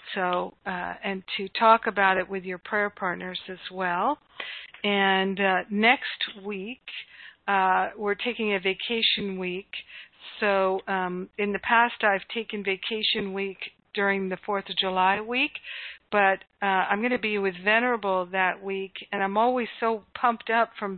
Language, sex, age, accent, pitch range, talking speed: English, female, 50-69, American, 190-220 Hz, 155 wpm